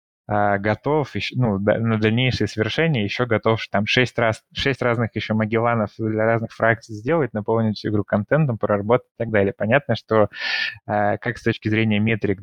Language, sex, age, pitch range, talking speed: Russian, male, 20-39, 105-115 Hz, 165 wpm